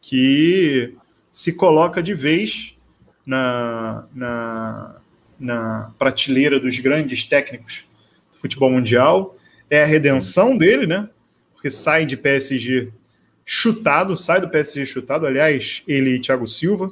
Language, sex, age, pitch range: Portuguese, male, 20-39, 130-160 Hz